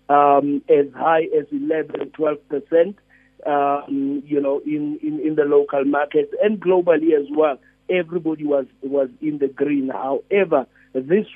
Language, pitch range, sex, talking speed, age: English, 145-175 Hz, male, 150 wpm, 50-69